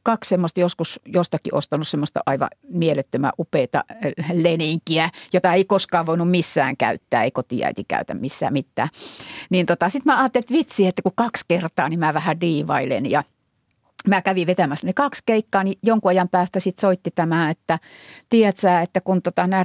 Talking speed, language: 170 wpm, Finnish